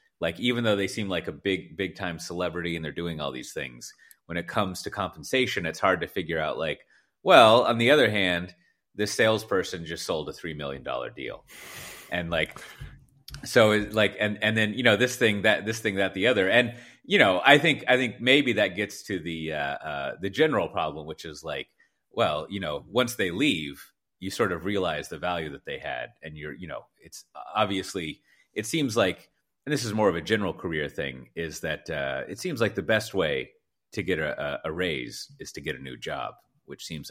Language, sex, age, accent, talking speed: English, male, 30-49, American, 220 wpm